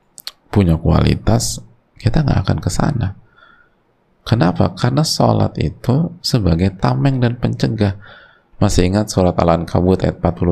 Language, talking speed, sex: Indonesian, 115 wpm, male